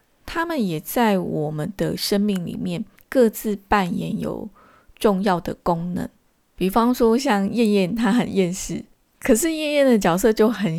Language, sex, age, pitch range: Chinese, female, 20-39, 180-230 Hz